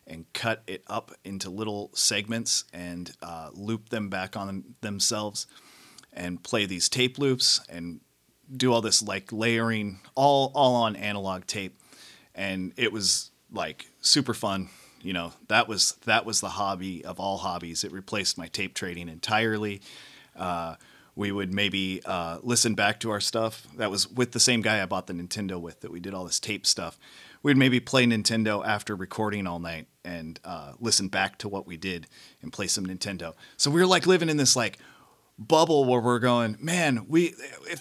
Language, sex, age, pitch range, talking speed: English, male, 30-49, 95-125 Hz, 185 wpm